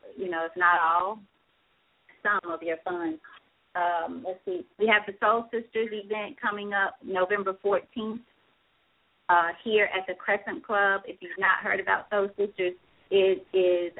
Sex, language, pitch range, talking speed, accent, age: female, English, 180-210 Hz, 160 wpm, American, 30-49